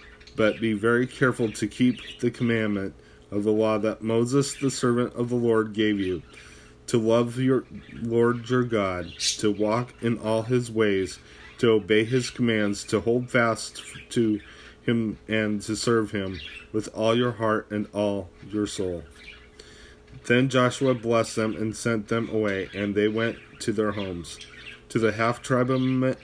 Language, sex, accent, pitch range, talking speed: English, male, American, 100-115 Hz, 160 wpm